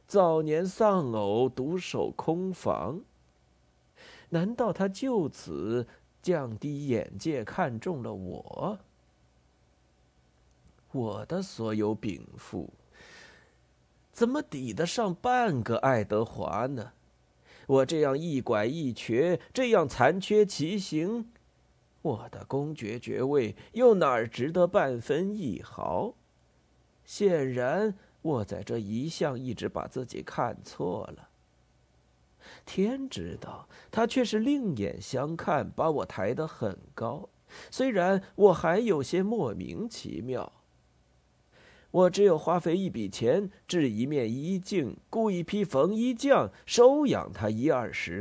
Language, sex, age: Chinese, male, 50-69